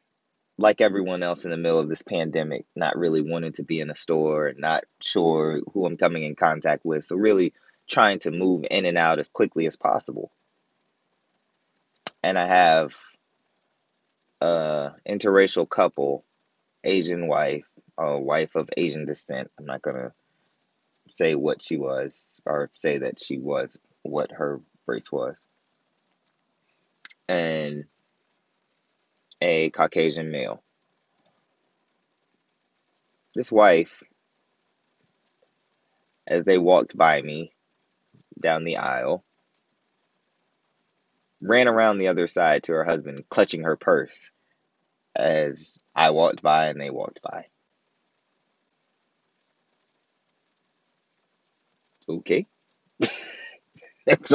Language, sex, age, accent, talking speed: English, male, 20-39, American, 110 wpm